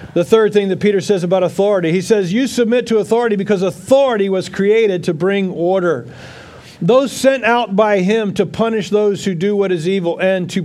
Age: 50-69